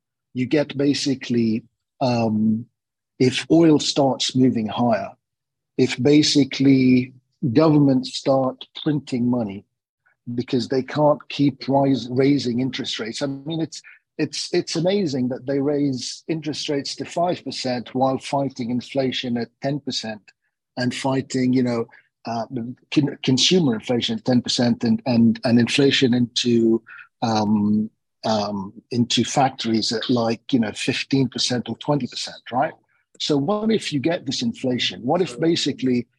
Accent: British